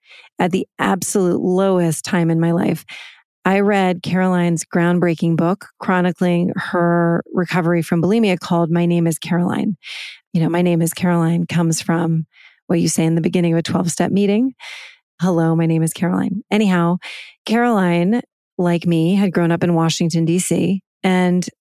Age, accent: 30-49, American